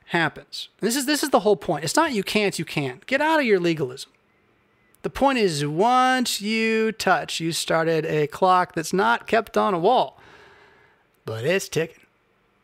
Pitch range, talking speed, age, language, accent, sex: 140-205 Hz, 180 wpm, 30-49, English, American, male